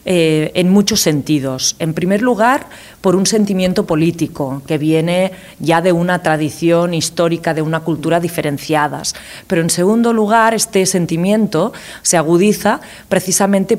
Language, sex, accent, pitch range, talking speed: French, female, Spanish, 165-200 Hz, 135 wpm